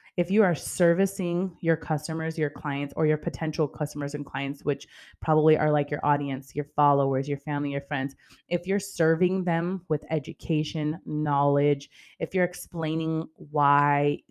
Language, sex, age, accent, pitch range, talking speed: English, female, 20-39, American, 145-160 Hz, 155 wpm